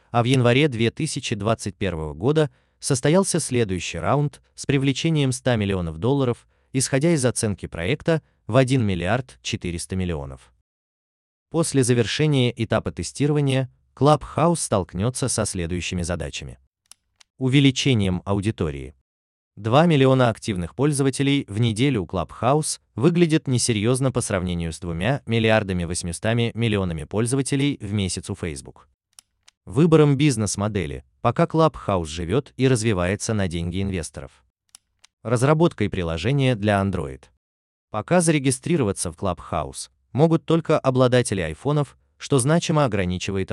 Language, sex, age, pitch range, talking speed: Russian, male, 30-49, 90-135 Hz, 110 wpm